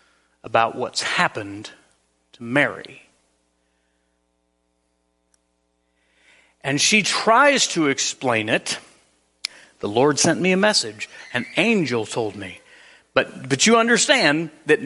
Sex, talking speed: male, 105 wpm